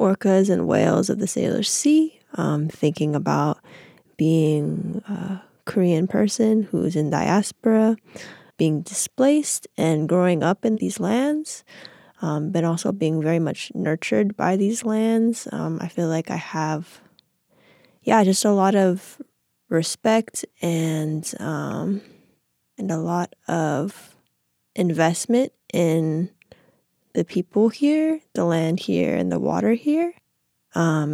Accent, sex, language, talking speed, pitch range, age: American, female, English, 125 wpm, 160-220 Hz, 20-39